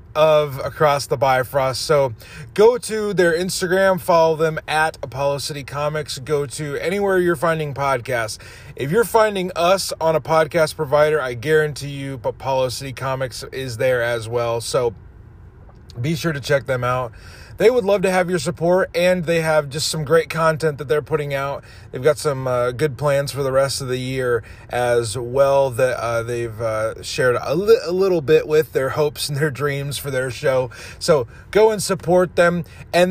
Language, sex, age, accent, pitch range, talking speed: English, male, 30-49, American, 130-165 Hz, 185 wpm